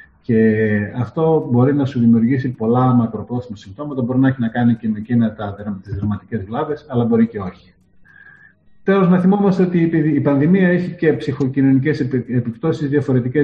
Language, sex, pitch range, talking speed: Greek, male, 115-145 Hz, 155 wpm